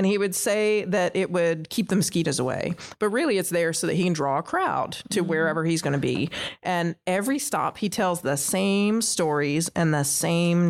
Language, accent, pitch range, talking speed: English, American, 165-215 Hz, 220 wpm